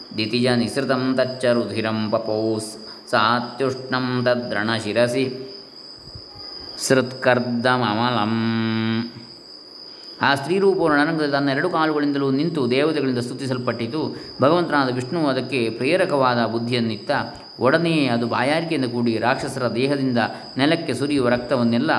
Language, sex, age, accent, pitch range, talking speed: Kannada, male, 20-39, native, 115-130 Hz, 80 wpm